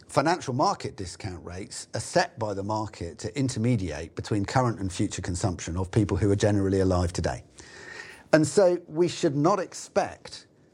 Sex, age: male, 40-59